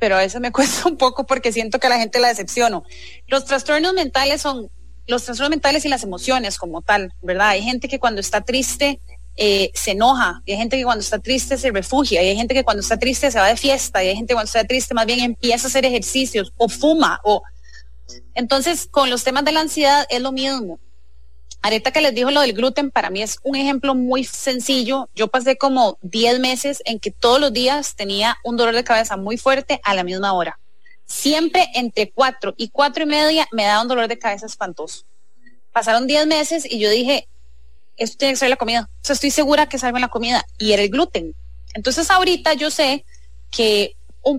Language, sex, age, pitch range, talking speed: English, female, 30-49, 210-275 Hz, 220 wpm